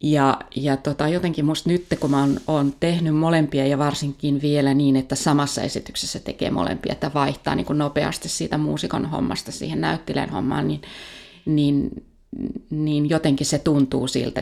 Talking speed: 150 wpm